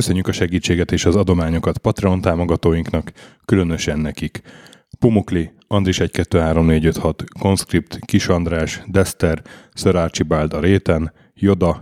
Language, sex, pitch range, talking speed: Hungarian, male, 85-95 Hz, 100 wpm